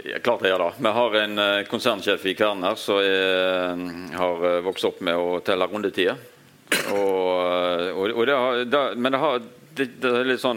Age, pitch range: 40-59, 95-120 Hz